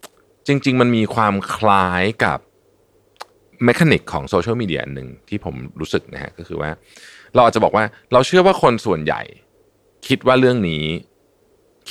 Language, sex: Thai, male